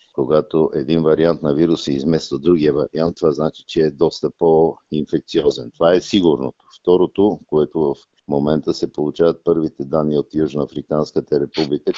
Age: 50-69